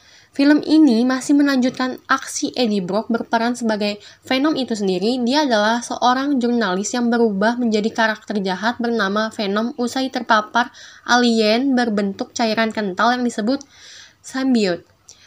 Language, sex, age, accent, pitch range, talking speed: Indonesian, female, 10-29, native, 220-255 Hz, 125 wpm